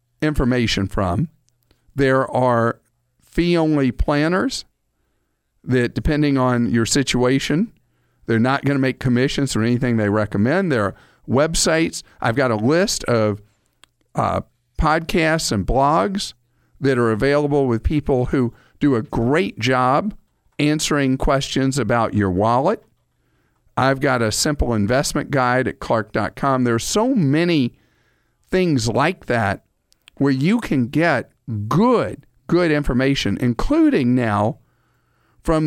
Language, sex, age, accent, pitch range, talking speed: English, male, 50-69, American, 120-150 Hz, 125 wpm